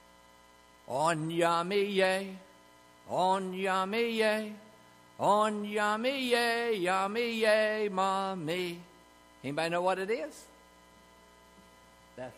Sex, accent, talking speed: male, American, 85 wpm